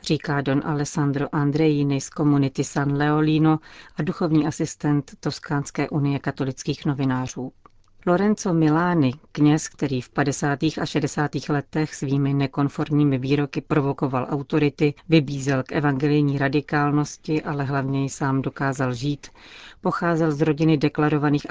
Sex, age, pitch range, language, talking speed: female, 40-59, 140-155 Hz, Czech, 115 wpm